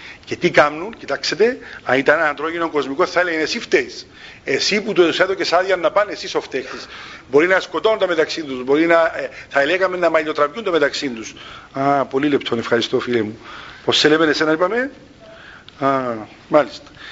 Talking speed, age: 180 wpm, 50-69